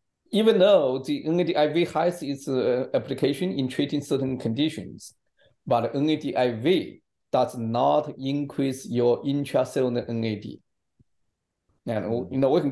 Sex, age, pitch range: male, 50-69, 115-140 Hz